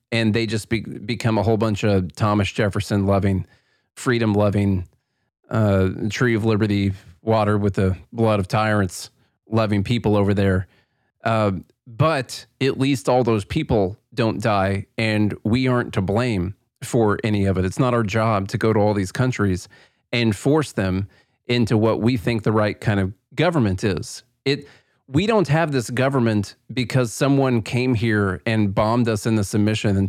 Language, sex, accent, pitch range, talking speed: English, male, American, 105-125 Hz, 170 wpm